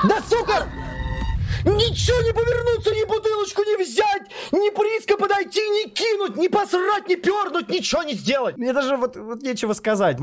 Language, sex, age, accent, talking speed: Russian, male, 20-39, native, 130 wpm